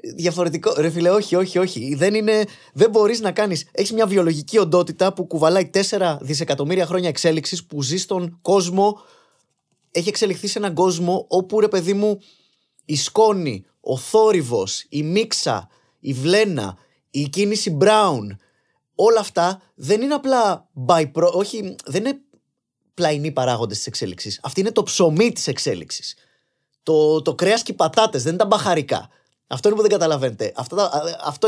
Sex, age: male, 20-39